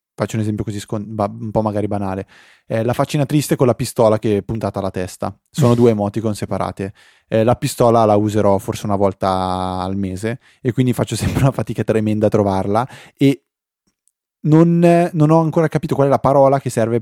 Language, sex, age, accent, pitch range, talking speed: Italian, male, 20-39, native, 100-120 Hz, 205 wpm